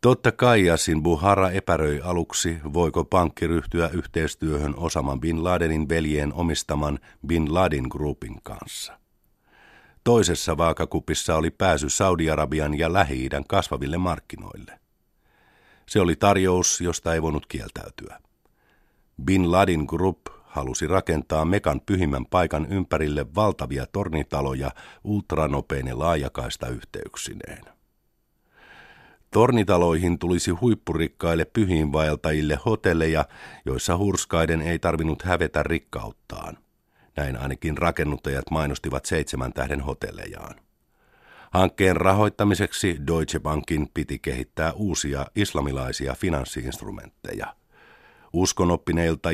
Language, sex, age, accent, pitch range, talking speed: Finnish, male, 50-69, native, 75-90 Hz, 95 wpm